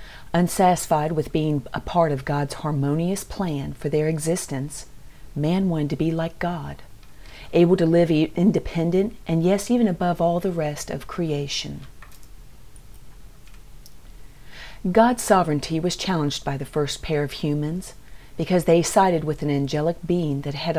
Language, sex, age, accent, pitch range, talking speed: English, female, 40-59, American, 145-180 Hz, 145 wpm